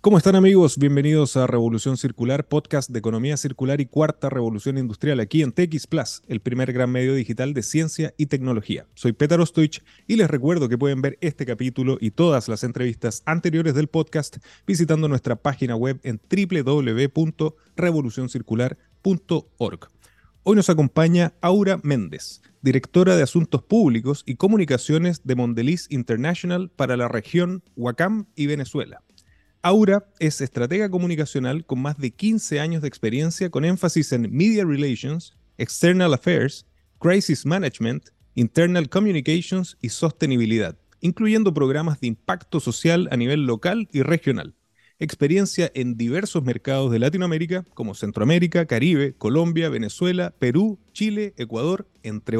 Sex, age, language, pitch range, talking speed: male, 30-49, Spanish, 125-170 Hz, 135 wpm